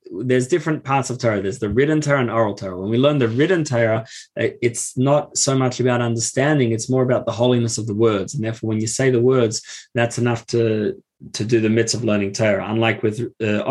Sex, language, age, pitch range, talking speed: male, English, 20-39, 110-130 Hz, 230 wpm